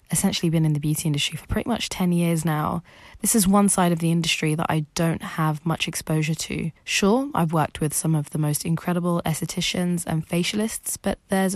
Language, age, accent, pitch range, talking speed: English, 20-39, British, 160-200 Hz, 210 wpm